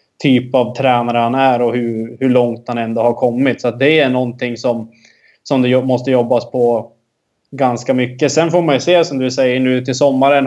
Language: Swedish